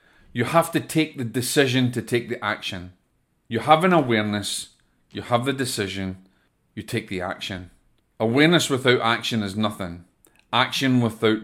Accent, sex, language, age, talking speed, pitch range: British, male, English, 30-49, 150 wpm, 105-135 Hz